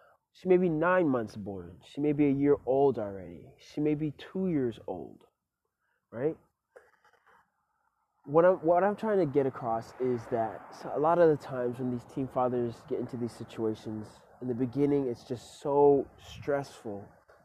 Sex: male